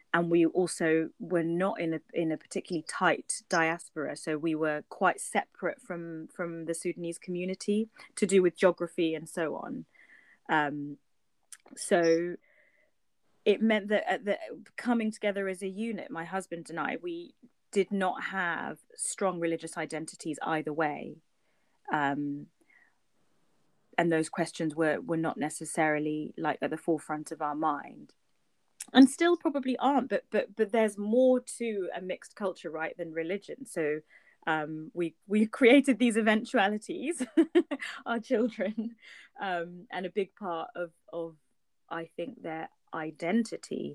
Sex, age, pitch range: female, 30-49, 160-210 Hz